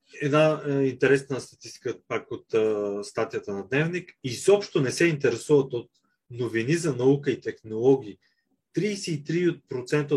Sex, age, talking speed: male, 30-49, 125 wpm